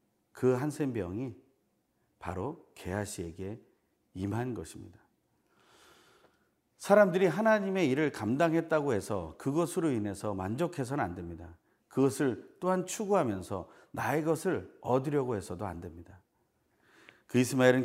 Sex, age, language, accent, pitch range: male, 40-59, Korean, native, 105-150 Hz